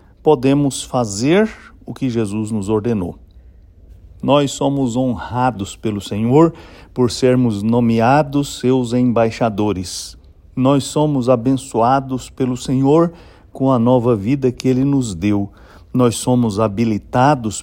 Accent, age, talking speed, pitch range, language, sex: Brazilian, 60-79, 110 wpm, 105-130 Hz, English, male